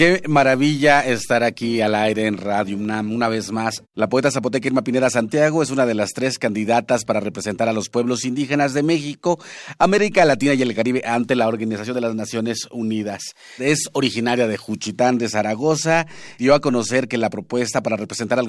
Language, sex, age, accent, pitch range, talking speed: Spanish, male, 40-59, Mexican, 110-130 Hz, 190 wpm